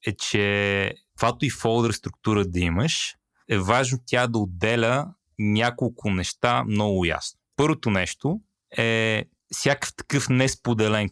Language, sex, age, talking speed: Bulgarian, male, 30-49, 125 wpm